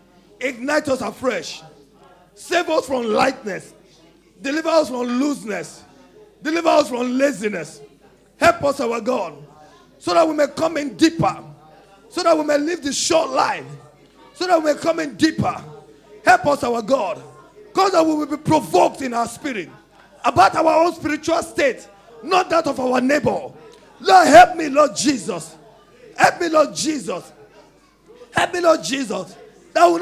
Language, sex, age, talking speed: English, male, 40-59, 155 wpm